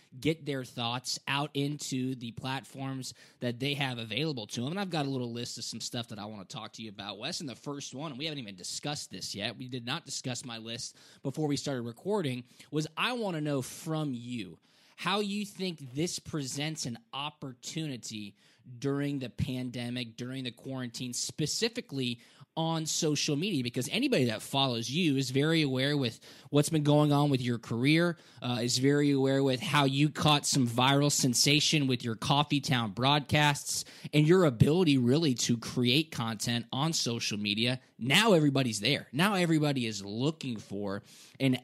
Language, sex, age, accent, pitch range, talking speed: English, male, 20-39, American, 125-150 Hz, 185 wpm